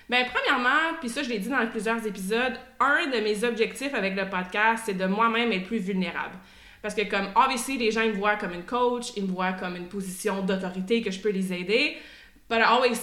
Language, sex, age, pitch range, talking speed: French, female, 20-39, 200-250 Hz, 235 wpm